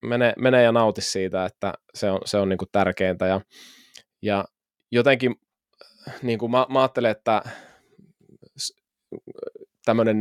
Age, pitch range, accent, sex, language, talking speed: 20-39, 100-120 Hz, native, male, Finnish, 135 wpm